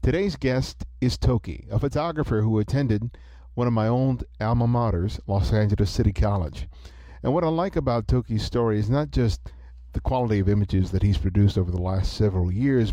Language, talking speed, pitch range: English, 185 wpm, 90-115 Hz